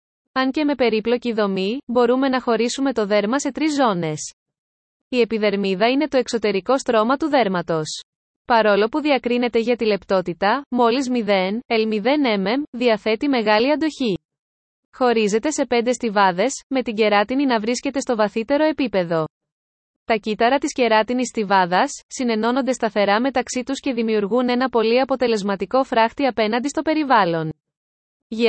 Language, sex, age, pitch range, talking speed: Greek, female, 20-39, 210-260 Hz, 135 wpm